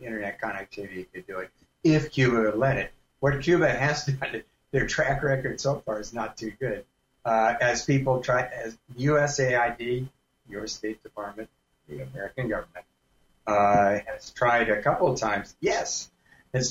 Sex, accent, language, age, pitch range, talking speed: male, American, English, 60-79, 100-130 Hz, 155 wpm